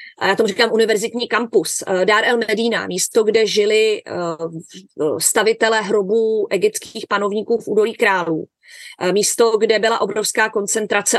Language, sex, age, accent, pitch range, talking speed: Czech, female, 30-49, native, 210-275 Hz, 125 wpm